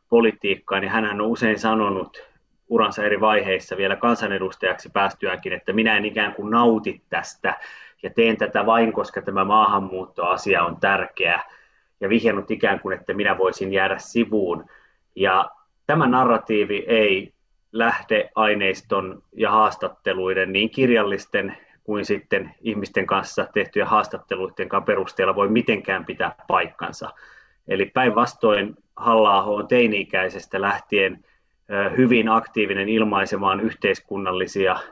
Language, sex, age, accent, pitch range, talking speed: Finnish, male, 30-49, native, 100-115 Hz, 120 wpm